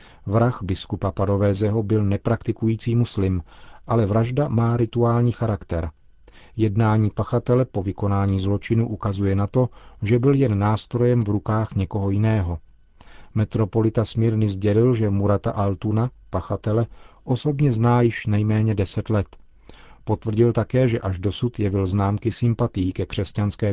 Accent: native